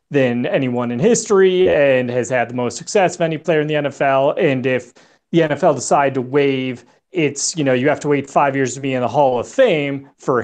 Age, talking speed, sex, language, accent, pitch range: 30-49, 230 wpm, male, English, American, 135-185 Hz